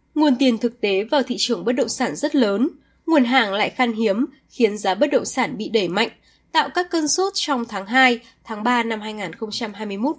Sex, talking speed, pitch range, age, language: female, 210 wpm, 215-280 Hz, 10-29, Vietnamese